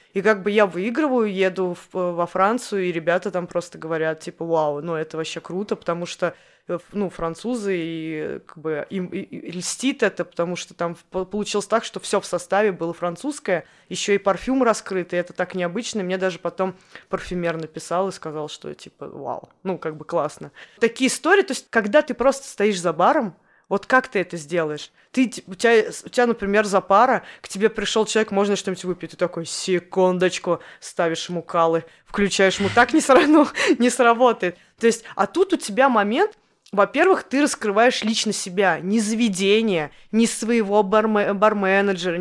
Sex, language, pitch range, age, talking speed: female, Russian, 180-225 Hz, 20-39, 180 wpm